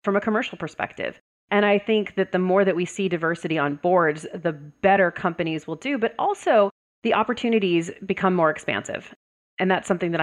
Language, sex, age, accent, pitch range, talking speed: English, female, 30-49, American, 155-190 Hz, 190 wpm